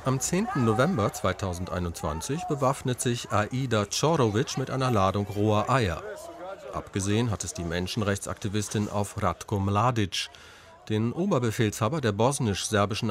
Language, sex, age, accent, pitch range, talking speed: German, male, 40-59, German, 95-125 Hz, 115 wpm